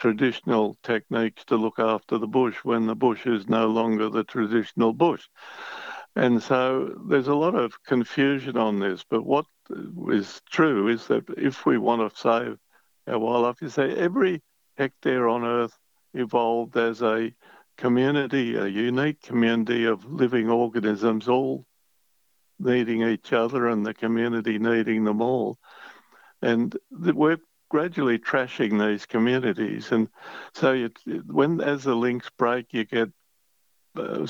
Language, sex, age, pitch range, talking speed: English, male, 60-79, 115-130 Hz, 140 wpm